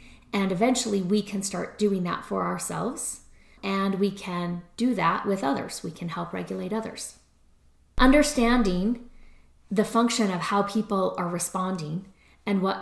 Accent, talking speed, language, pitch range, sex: American, 145 wpm, English, 185-220 Hz, female